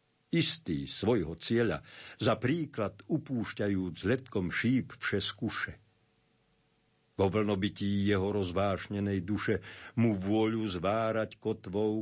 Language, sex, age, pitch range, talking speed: Slovak, male, 50-69, 95-120 Hz, 95 wpm